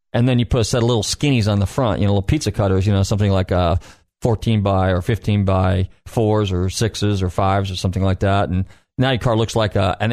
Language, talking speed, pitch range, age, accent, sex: English, 250 wpm, 100-125 Hz, 40-59, American, male